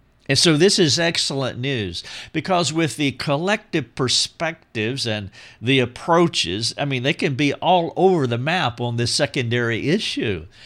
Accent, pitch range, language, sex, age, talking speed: American, 115-135 Hz, English, male, 50-69, 150 wpm